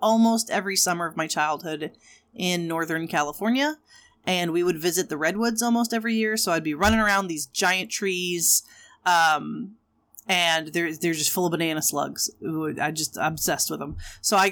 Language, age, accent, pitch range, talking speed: English, 30-49, American, 175-235 Hz, 180 wpm